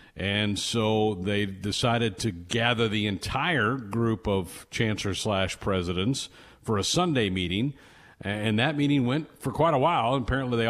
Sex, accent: male, American